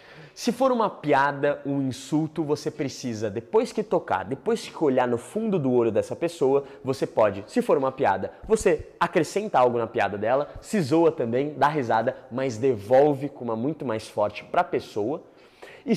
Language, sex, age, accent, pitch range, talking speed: Portuguese, male, 20-39, Brazilian, 130-185 Hz, 180 wpm